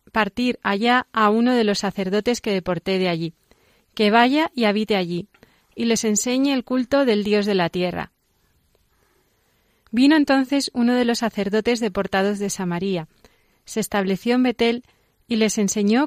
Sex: female